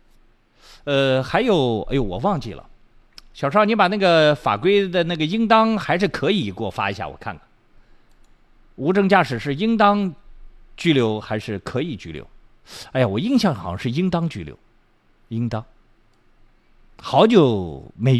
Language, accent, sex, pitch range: Chinese, native, male, 110-175 Hz